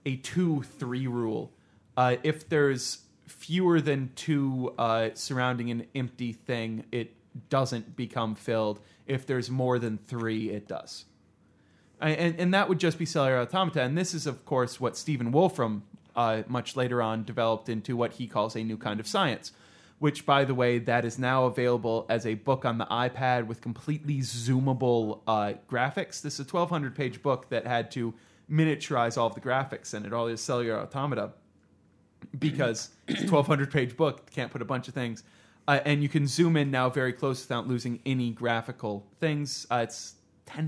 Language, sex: English, male